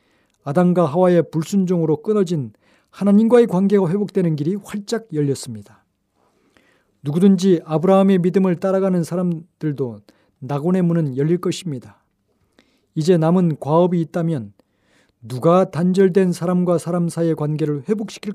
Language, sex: Korean, male